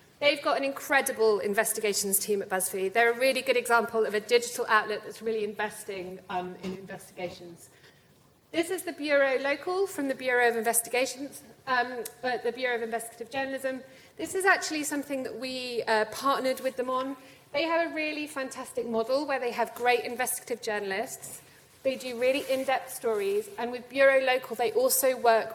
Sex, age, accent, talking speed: female, 30-49, British, 175 wpm